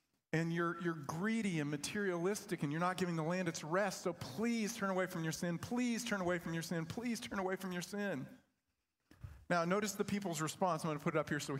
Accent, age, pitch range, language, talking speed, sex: American, 40-59, 125-175 Hz, English, 245 wpm, male